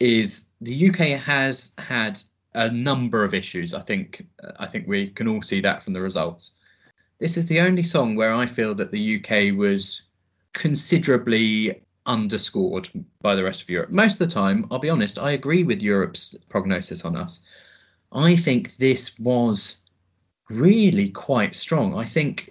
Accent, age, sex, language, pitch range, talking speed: British, 20-39, male, English, 120-175 Hz, 170 wpm